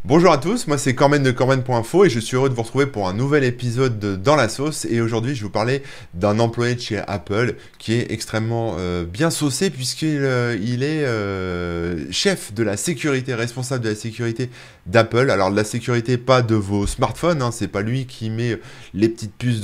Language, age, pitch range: French, 20-39, 105-140 Hz